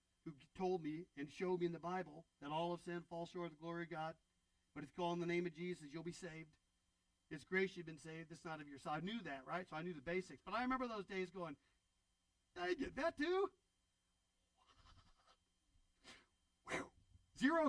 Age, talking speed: 40-59, 210 wpm